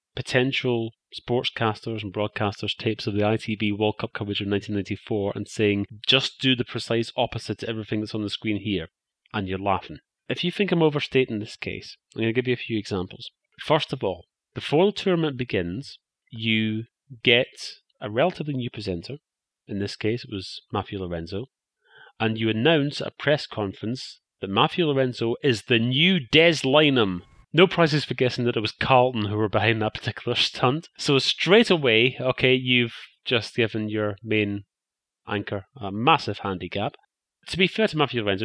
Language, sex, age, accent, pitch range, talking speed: English, male, 30-49, British, 105-130 Hz, 175 wpm